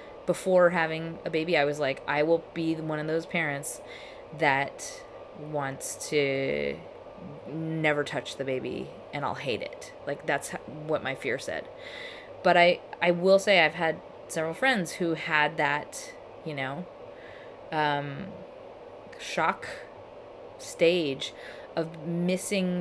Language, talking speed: English, 130 wpm